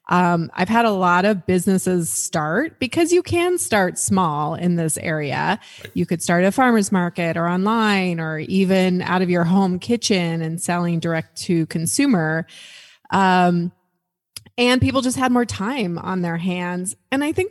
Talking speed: 170 wpm